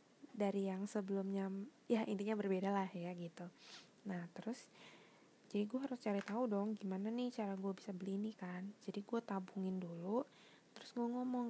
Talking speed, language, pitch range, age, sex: 165 wpm, Indonesian, 195-235 Hz, 20-39, female